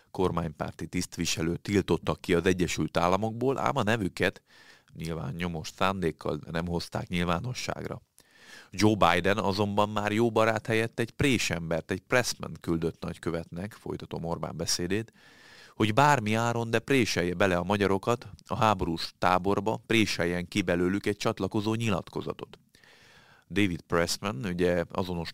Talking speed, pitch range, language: 125 wpm, 85-105 Hz, Hungarian